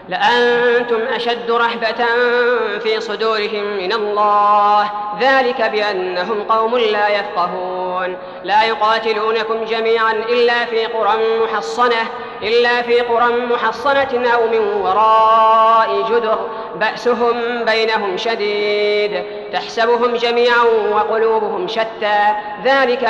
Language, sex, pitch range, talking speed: Arabic, female, 210-240 Hz, 90 wpm